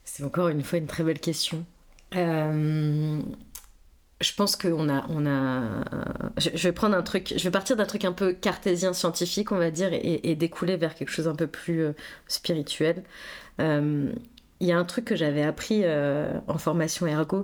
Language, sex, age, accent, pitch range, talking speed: French, female, 30-49, French, 150-180 Hz, 165 wpm